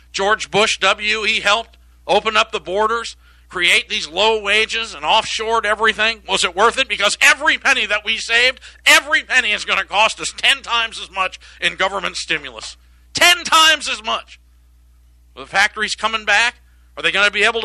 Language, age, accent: English, 50-69, American